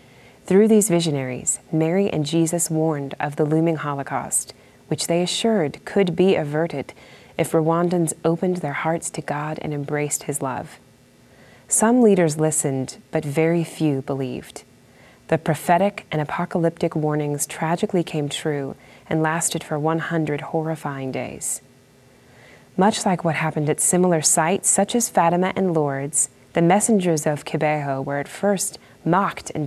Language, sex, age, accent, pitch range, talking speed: English, female, 30-49, American, 150-180 Hz, 140 wpm